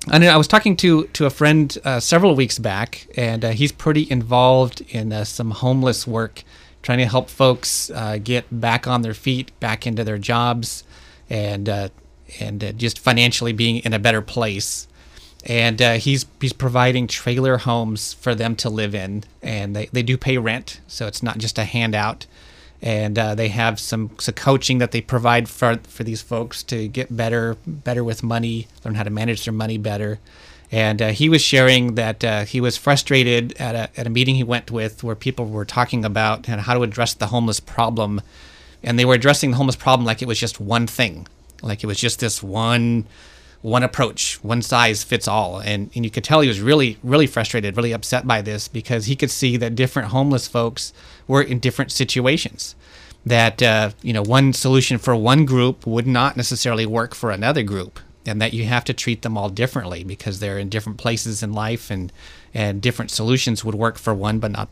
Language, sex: English, male